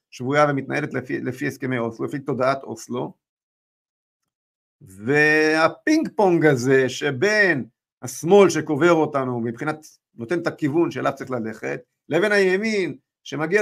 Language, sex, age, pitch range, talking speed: Hebrew, male, 50-69, 135-210 Hz, 110 wpm